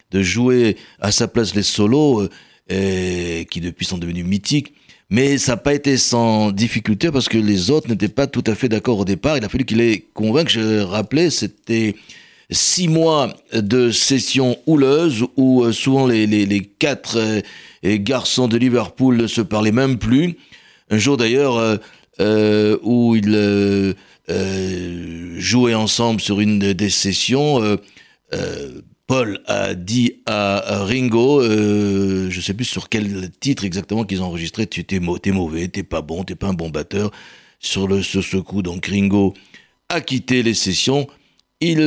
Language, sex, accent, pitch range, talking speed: French, male, French, 95-125 Hz, 180 wpm